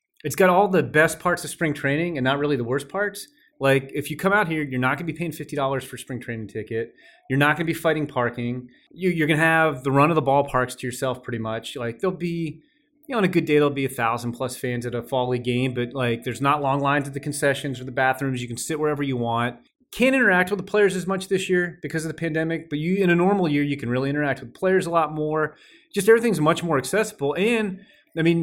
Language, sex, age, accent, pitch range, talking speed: English, male, 30-49, American, 130-170 Hz, 265 wpm